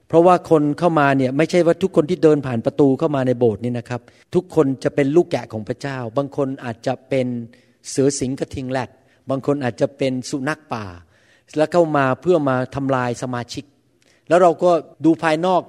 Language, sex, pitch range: Thai, male, 125-160 Hz